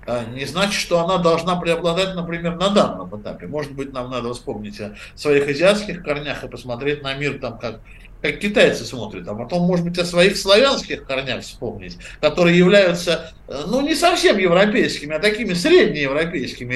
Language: Russian